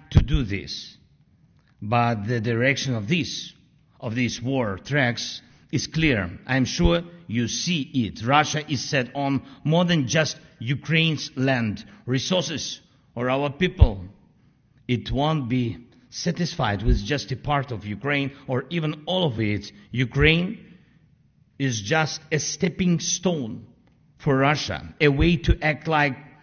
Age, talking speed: 50-69, 135 wpm